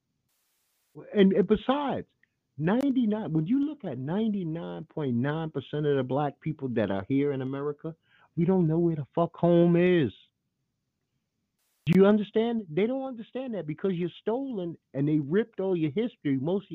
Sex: male